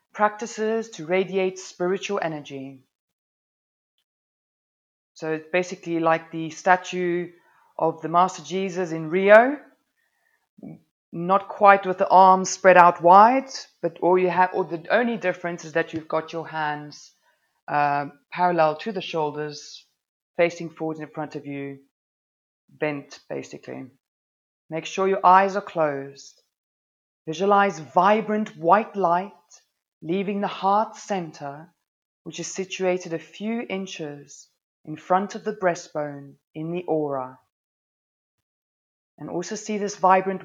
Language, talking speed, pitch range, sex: English, 125 wpm, 155-195 Hz, female